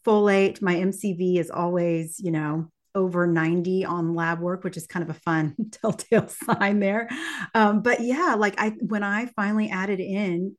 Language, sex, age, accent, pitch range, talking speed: English, female, 30-49, American, 170-215 Hz, 175 wpm